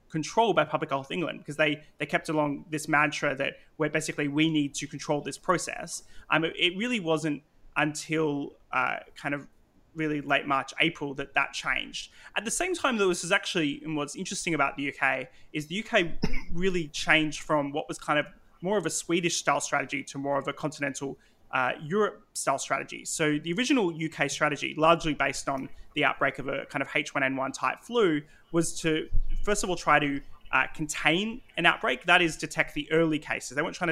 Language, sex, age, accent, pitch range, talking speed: English, male, 20-39, Australian, 145-170 Hz, 200 wpm